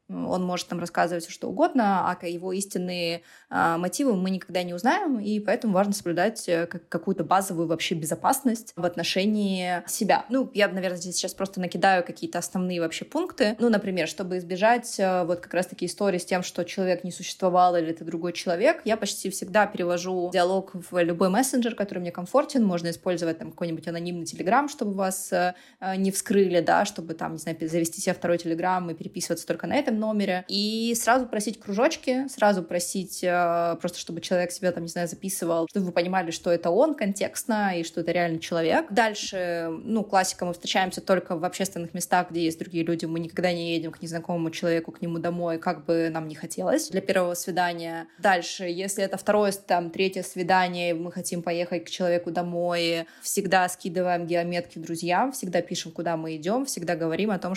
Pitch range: 170-195 Hz